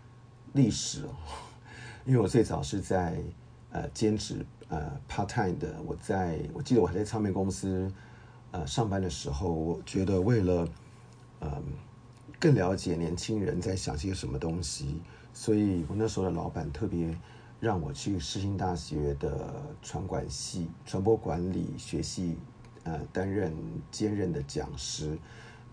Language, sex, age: Chinese, male, 50-69